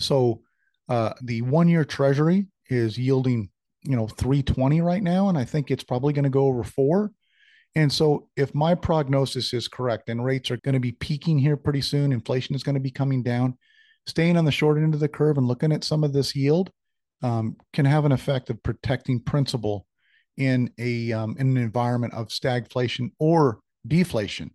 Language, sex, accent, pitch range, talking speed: English, male, American, 115-145 Hz, 190 wpm